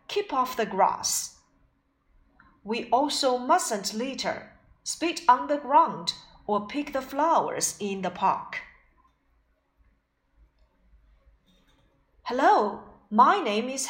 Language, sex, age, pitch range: Chinese, female, 40-59, 200-315 Hz